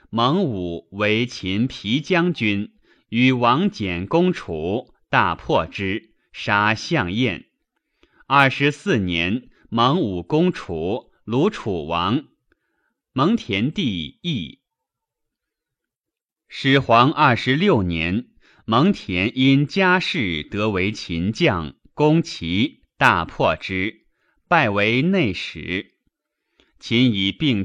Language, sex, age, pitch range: Chinese, male, 30-49, 100-150 Hz